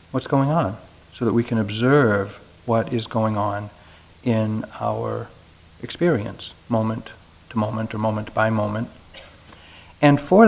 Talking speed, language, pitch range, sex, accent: 135 wpm, English, 85-130 Hz, male, American